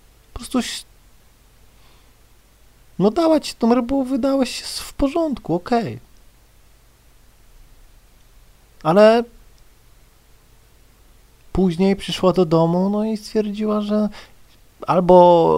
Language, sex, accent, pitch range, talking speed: Polish, male, native, 120-195 Hz, 90 wpm